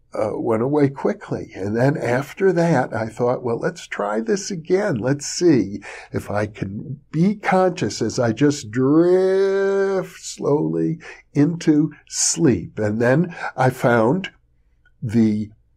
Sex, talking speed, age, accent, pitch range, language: male, 130 wpm, 50-69, American, 110-165 Hz, English